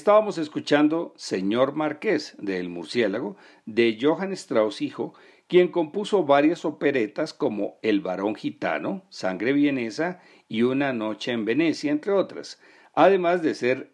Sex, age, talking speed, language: male, 50-69, 130 wpm, Spanish